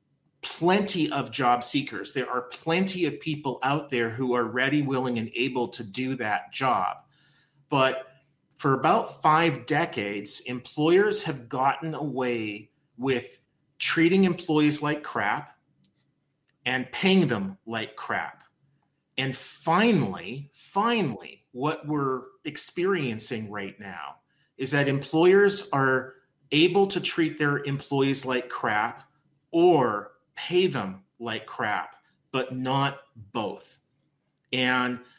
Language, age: English, 30-49